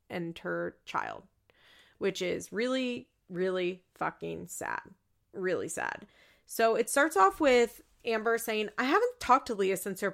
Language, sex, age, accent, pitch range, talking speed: English, female, 30-49, American, 185-240 Hz, 150 wpm